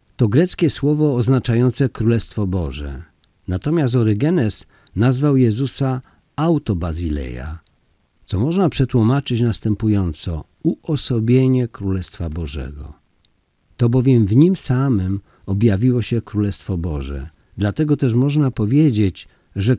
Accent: native